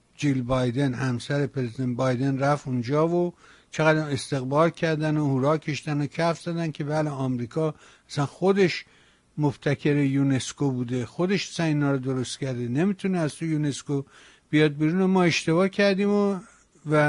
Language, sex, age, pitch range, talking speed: Persian, male, 60-79, 145-185 Hz, 140 wpm